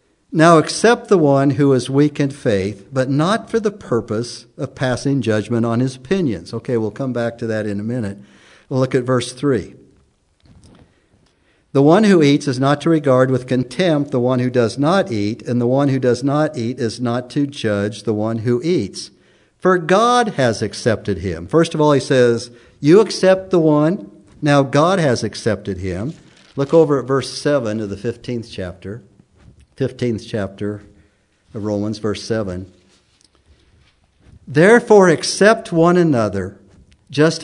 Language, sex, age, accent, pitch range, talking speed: English, male, 60-79, American, 100-145 Hz, 165 wpm